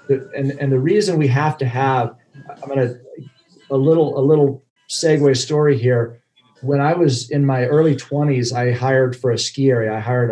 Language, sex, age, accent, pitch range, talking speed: English, male, 40-59, American, 120-145 Hz, 185 wpm